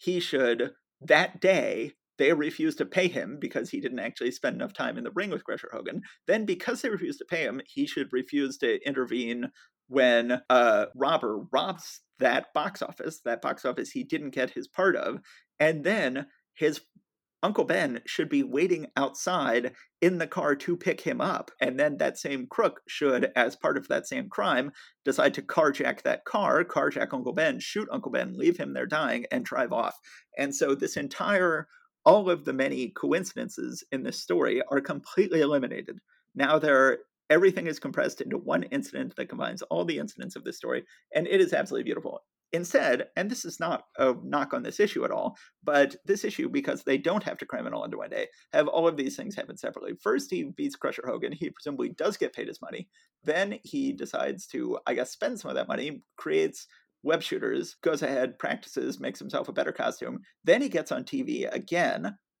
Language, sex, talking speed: English, male, 195 wpm